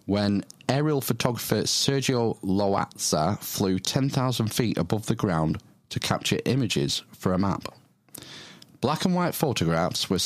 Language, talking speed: English, 130 wpm